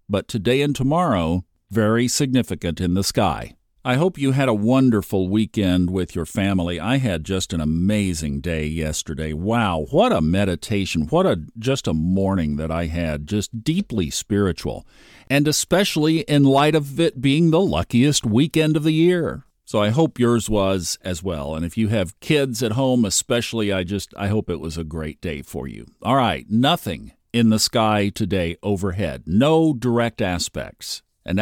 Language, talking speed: English, 175 wpm